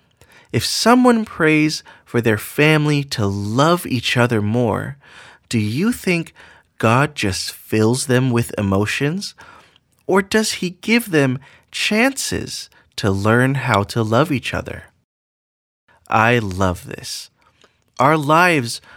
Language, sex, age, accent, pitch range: Chinese, male, 30-49, American, 110-170 Hz